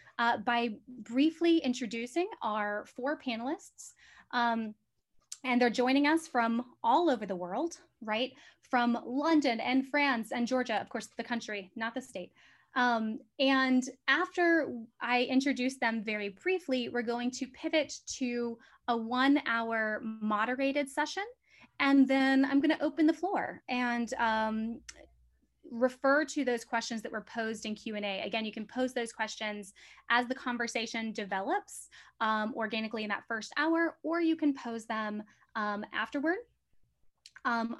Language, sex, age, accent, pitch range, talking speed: English, female, 20-39, American, 225-275 Hz, 145 wpm